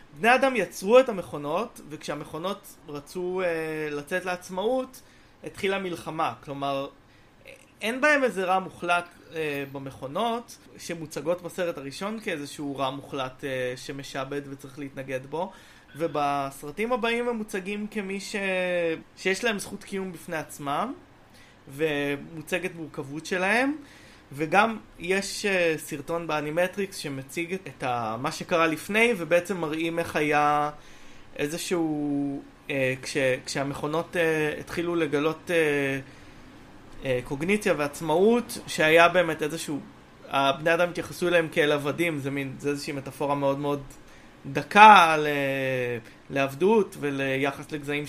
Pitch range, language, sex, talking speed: 145-185 Hz, Hebrew, male, 105 wpm